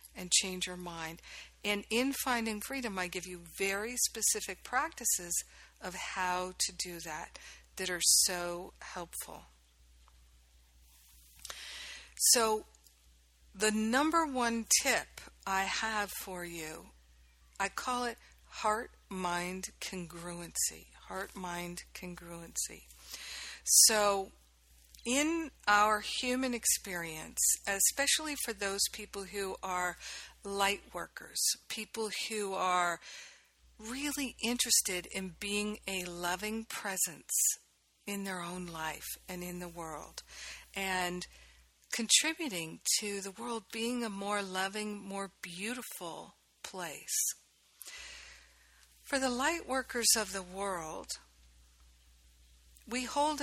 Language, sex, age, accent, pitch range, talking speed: English, female, 50-69, American, 170-225 Hz, 100 wpm